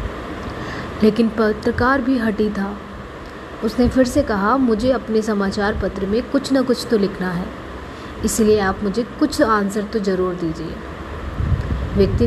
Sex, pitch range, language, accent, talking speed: female, 195-255 Hz, Hindi, native, 145 wpm